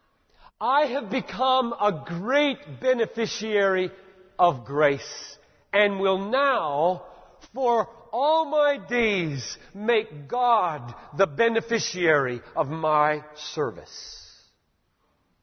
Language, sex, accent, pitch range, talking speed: English, male, American, 115-180 Hz, 85 wpm